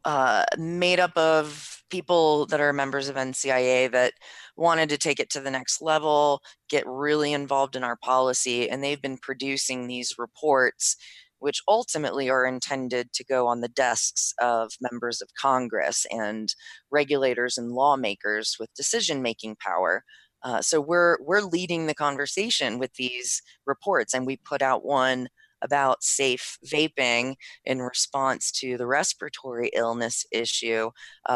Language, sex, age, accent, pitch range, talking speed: English, female, 30-49, American, 125-150 Hz, 145 wpm